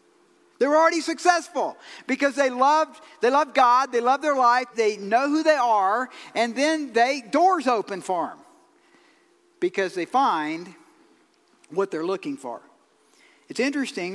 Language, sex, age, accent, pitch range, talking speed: English, male, 50-69, American, 235-320 Hz, 145 wpm